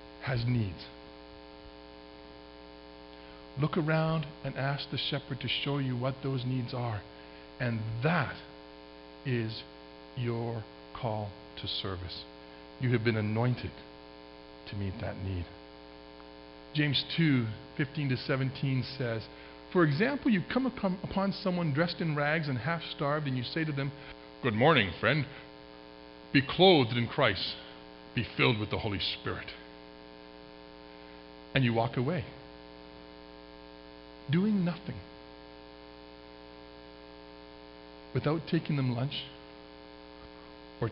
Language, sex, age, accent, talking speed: English, male, 50-69, American, 110 wpm